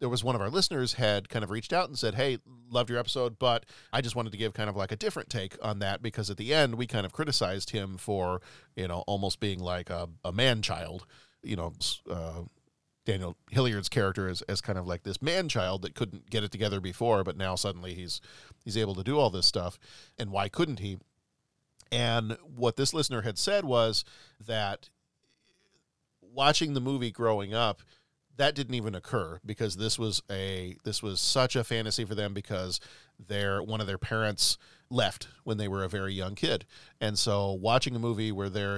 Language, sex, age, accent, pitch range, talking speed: English, male, 40-59, American, 100-120 Hz, 205 wpm